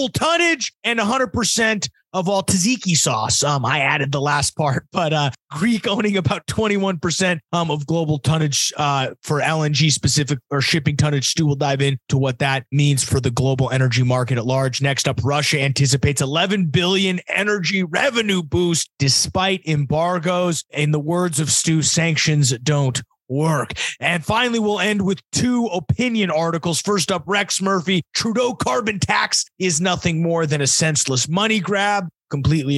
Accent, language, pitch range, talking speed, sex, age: American, English, 145-195 Hz, 160 wpm, male, 30-49